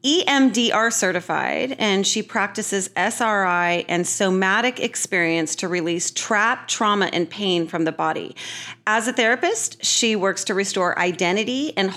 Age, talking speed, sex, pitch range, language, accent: 30-49, 135 wpm, female, 175-225 Hz, English, American